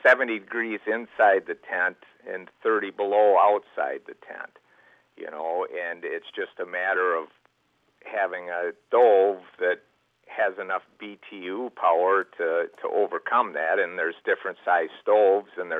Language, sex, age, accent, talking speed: English, male, 50-69, American, 145 wpm